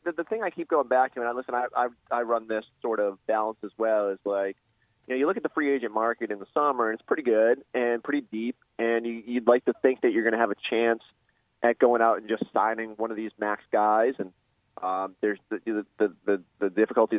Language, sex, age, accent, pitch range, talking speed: English, male, 30-49, American, 105-120 Hz, 260 wpm